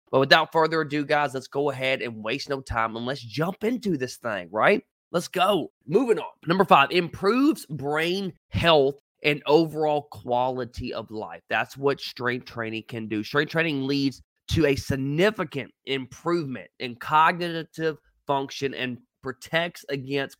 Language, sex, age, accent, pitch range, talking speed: English, male, 20-39, American, 125-155 Hz, 155 wpm